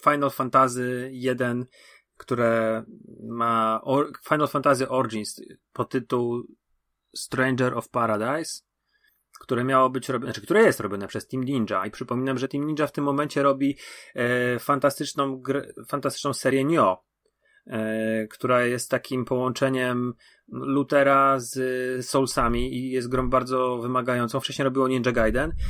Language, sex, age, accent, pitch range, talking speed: Polish, male, 30-49, native, 120-135 Hz, 130 wpm